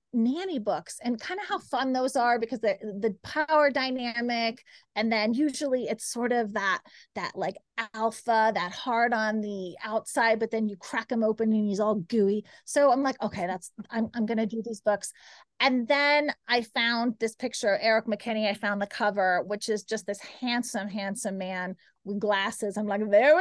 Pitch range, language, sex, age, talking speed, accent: 210-270 Hz, English, female, 30-49, 190 wpm, American